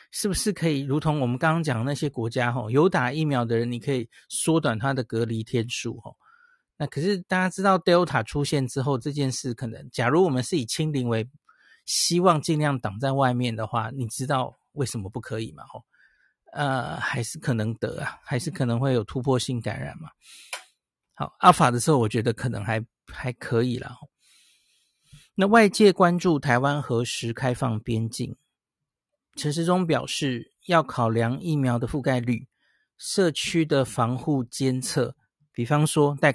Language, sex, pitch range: Chinese, male, 125-155 Hz